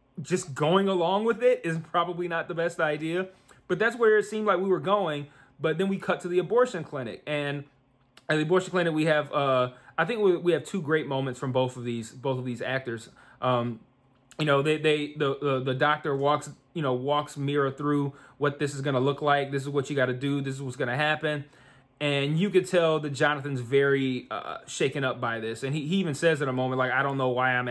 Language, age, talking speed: English, 30-49, 245 wpm